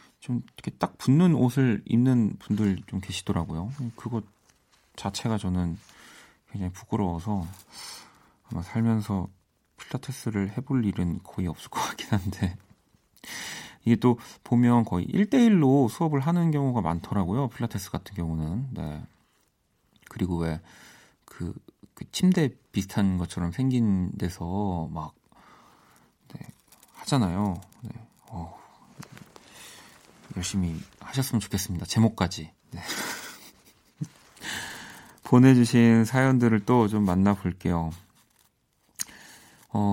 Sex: male